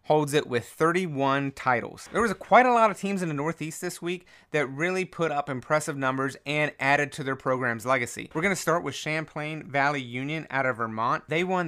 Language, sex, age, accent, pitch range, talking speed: English, male, 30-49, American, 130-160 Hz, 215 wpm